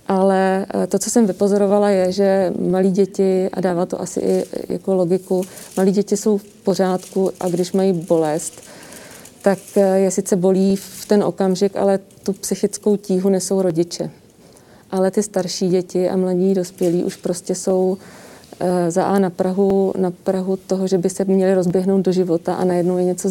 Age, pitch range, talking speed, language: 30-49, 180-195 Hz, 170 wpm, Czech